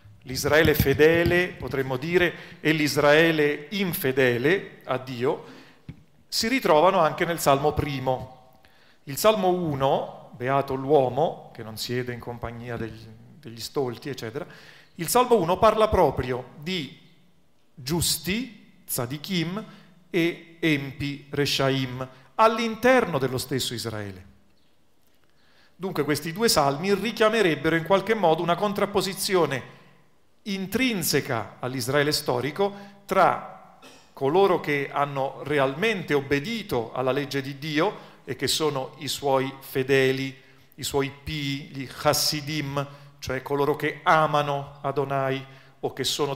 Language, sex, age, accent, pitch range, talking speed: Italian, male, 40-59, native, 130-170 Hz, 110 wpm